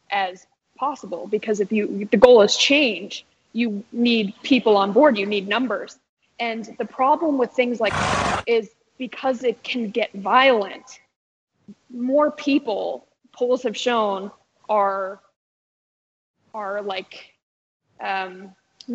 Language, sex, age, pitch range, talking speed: English, female, 20-39, 205-245 Hz, 125 wpm